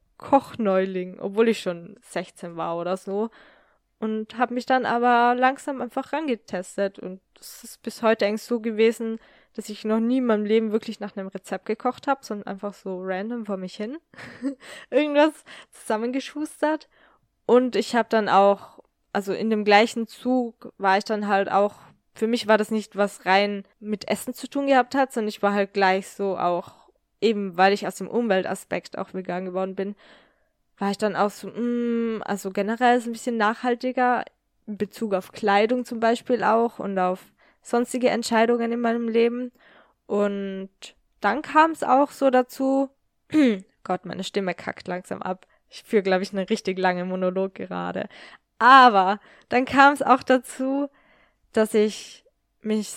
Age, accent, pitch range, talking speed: 10-29, German, 195-245 Hz, 170 wpm